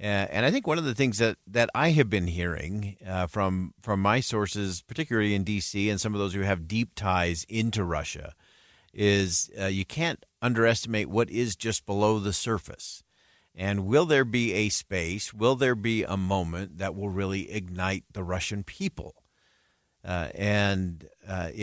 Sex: male